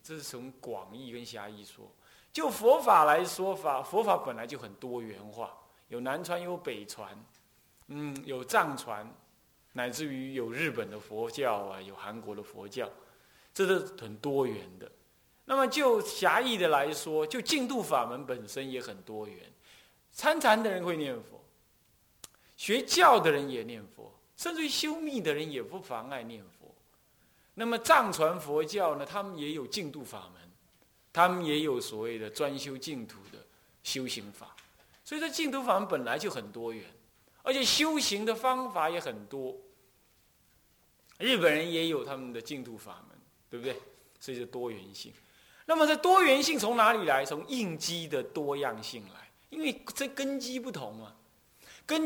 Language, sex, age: Chinese, male, 20-39